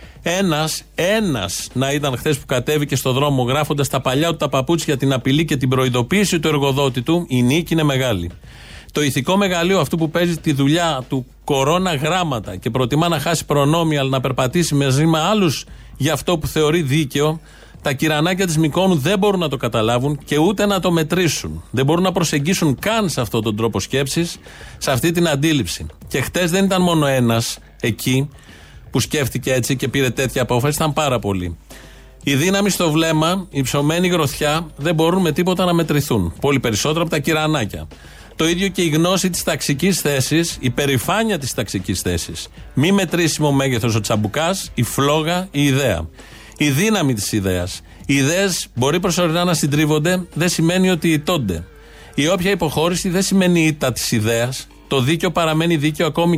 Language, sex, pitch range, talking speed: Greek, male, 130-170 Hz, 180 wpm